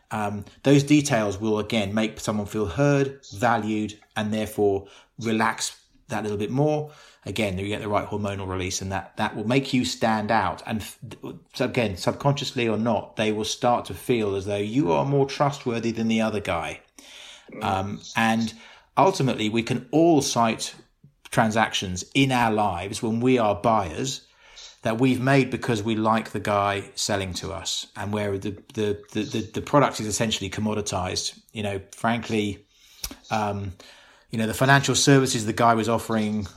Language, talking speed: English, 170 wpm